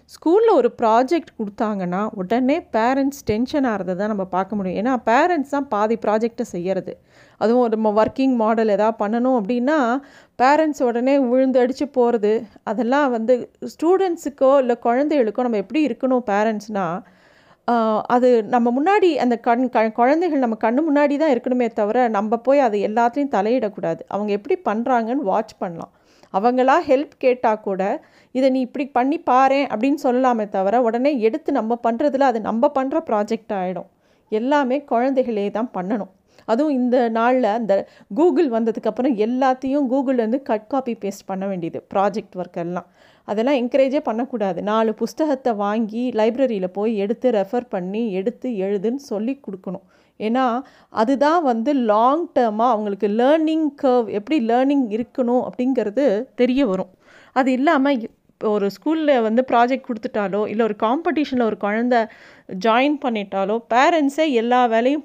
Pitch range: 215-270 Hz